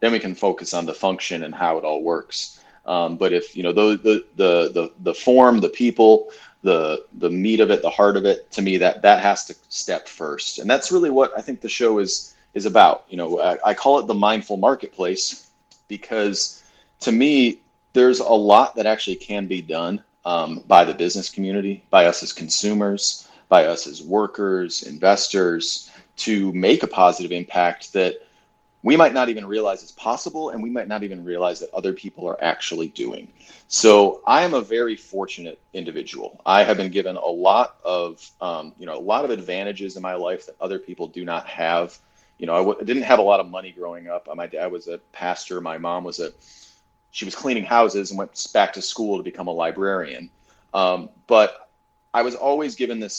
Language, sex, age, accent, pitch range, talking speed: English, male, 30-49, American, 90-110 Hz, 205 wpm